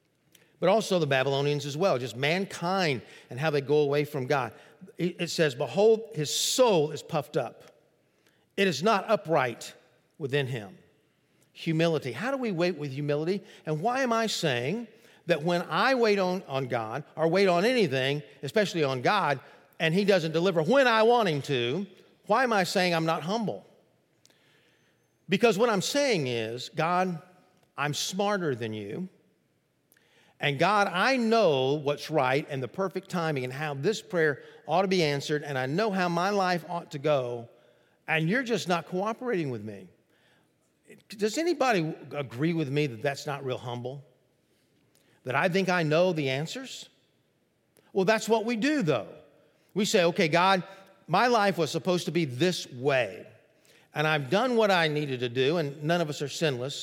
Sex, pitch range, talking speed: male, 145-195 Hz, 175 wpm